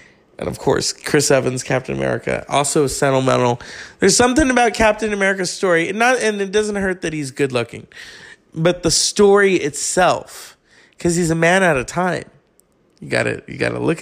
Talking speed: 180 wpm